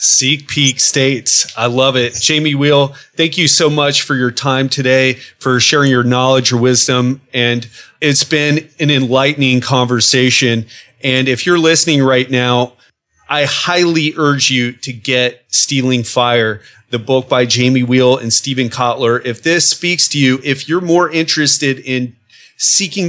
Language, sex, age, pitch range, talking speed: English, male, 30-49, 130-175 Hz, 160 wpm